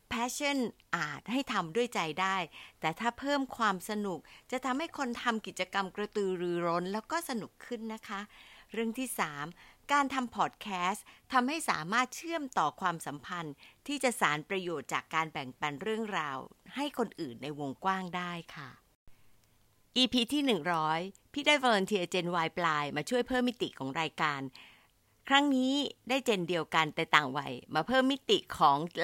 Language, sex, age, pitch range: Thai, female, 60-79, 175-250 Hz